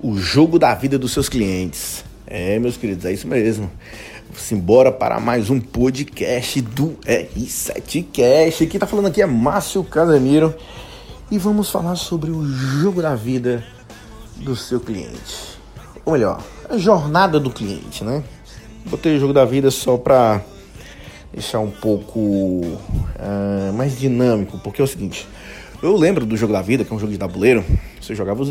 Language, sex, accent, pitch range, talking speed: Portuguese, male, Brazilian, 100-150 Hz, 165 wpm